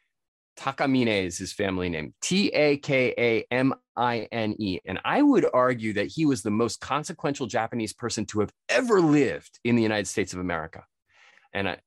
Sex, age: male, 20-39